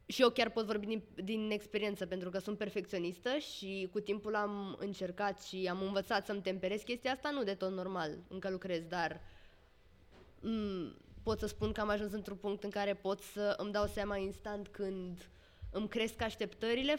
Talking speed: 185 wpm